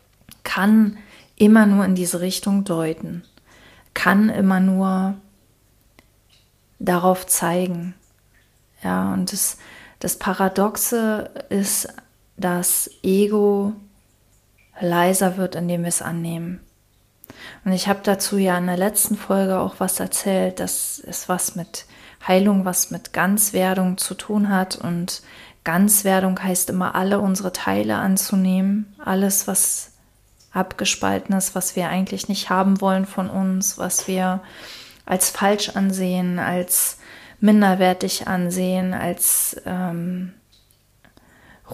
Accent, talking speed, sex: German, 110 wpm, female